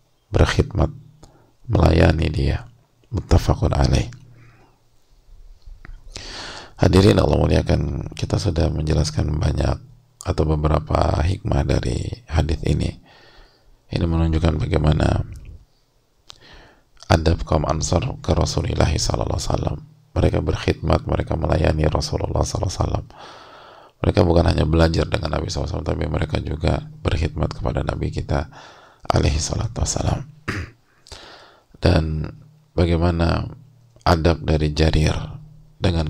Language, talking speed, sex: English, 90 wpm, male